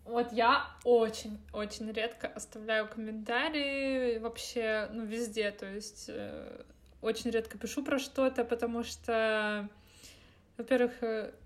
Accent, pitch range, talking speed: native, 230-275 Hz, 105 wpm